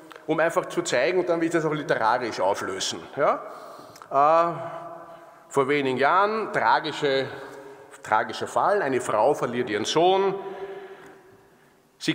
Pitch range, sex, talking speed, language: 145-225 Hz, male, 130 wpm, German